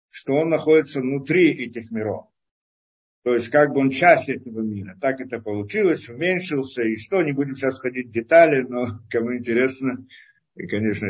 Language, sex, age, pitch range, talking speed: Russian, male, 50-69, 110-135 Hz, 160 wpm